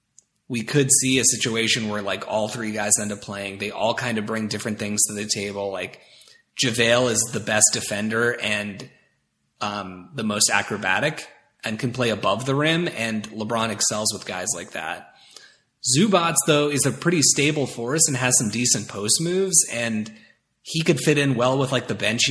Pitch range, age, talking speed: 110-140 Hz, 30-49, 190 wpm